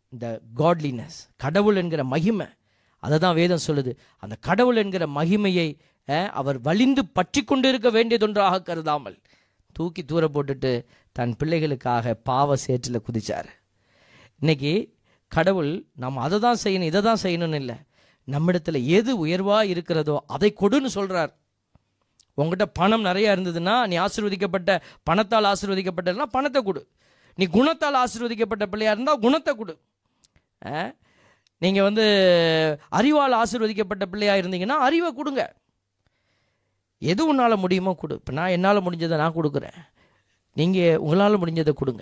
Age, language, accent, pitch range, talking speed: 20-39, Tamil, native, 140-205 Hz, 120 wpm